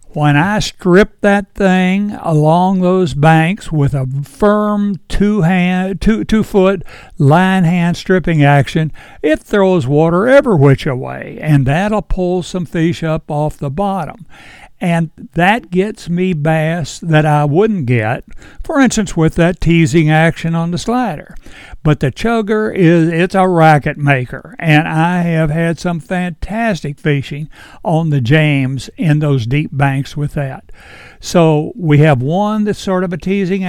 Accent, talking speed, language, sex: American, 150 wpm, English, male